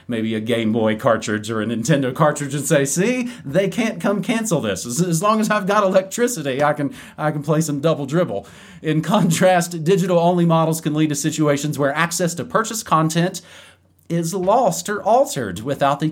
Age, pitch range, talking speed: 30-49, 130-170 Hz, 185 wpm